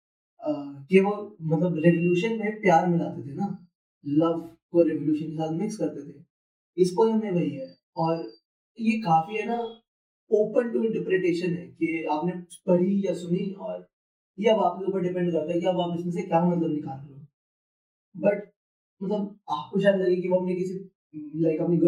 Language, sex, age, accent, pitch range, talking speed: Hindi, male, 20-39, native, 155-185 Hz, 45 wpm